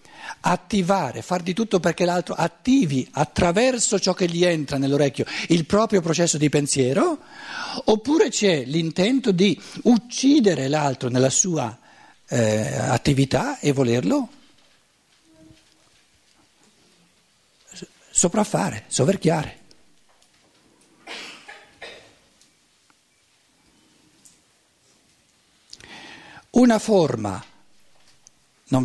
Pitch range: 120-185 Hz